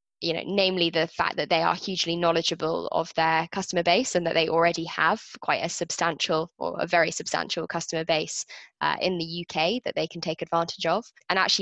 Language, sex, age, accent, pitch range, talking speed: English, female, 20-39, British, 160-180 Hz, 205 wpm